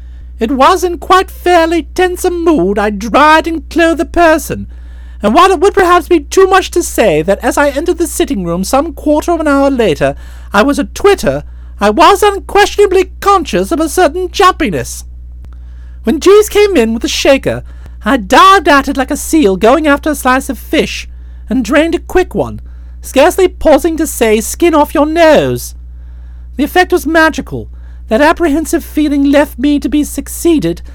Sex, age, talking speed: male, 50-69, 180 wpm